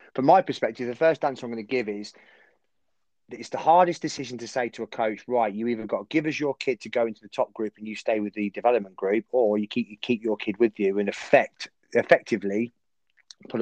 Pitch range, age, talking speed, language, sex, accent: 105-135 Hz, 30-49, 245 wpm, English, male, British